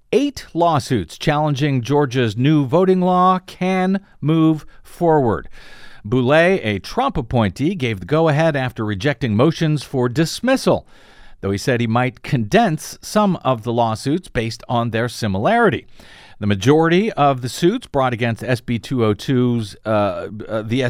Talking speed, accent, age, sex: 140 wpm, American, 50-69, male